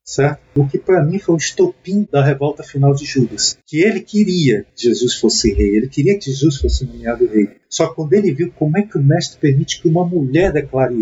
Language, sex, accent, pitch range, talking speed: Portuguese, male, Brazilian, 130-170 Hz, 220 wpm